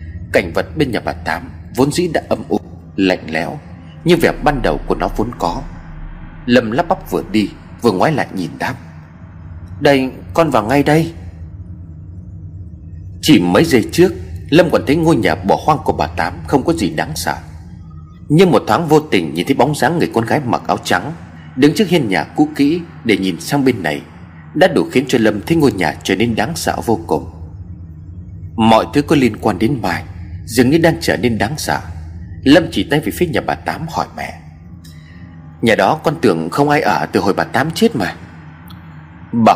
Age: 30-49